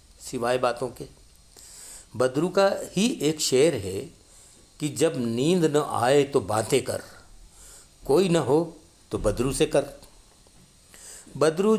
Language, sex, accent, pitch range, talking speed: Hindi, male, native, 115-160 Hz, 125 wpm